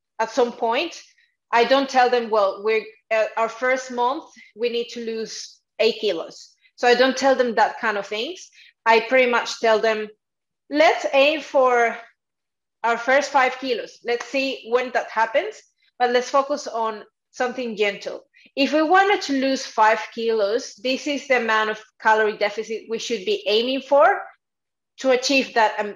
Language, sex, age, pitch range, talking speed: English, female, 30-49, 220-270 Hz, 170 wpm